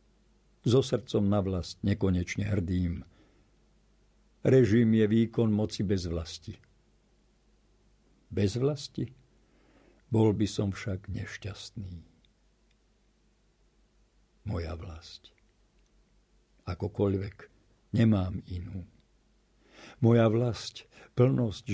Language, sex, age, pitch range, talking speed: Slovak, male, 60-79, 95-115 Hz, 75 wpm